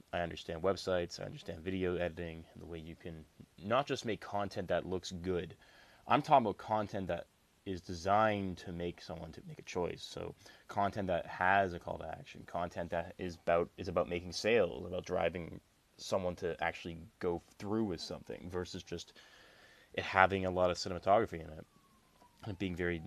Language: English